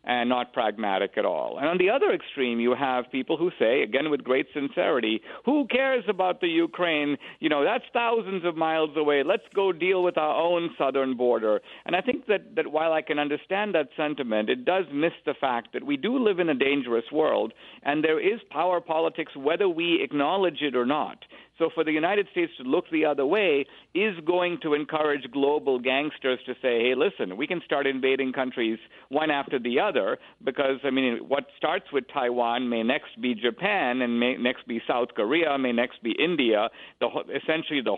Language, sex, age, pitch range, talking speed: English, male, 50-69, 125-170 Hz, 200 wpm